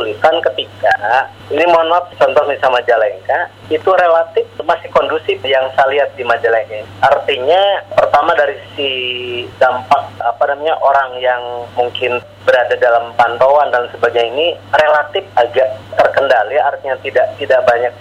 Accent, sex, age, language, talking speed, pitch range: native, male, 30-49, Indonesian, 130 wpm, 125-195 Hz